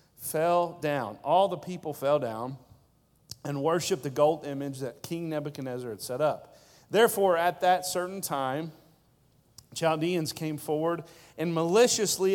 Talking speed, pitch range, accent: 135 wpm, 140-185 Hz, American